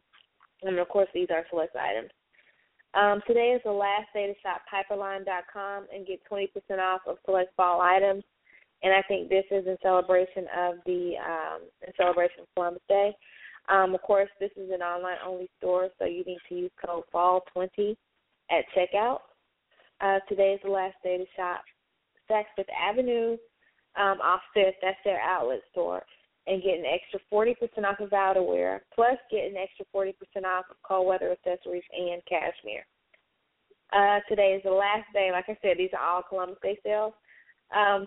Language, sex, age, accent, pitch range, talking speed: English, female, 20-39, American, 185-205 Hz, 180 wpm